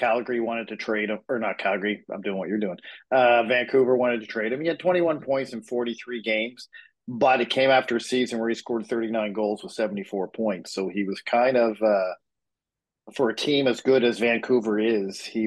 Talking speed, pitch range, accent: 215 wpm, 105-125 Hz, American